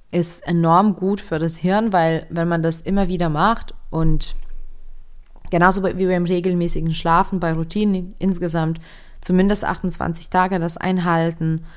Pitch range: 160-185 Hz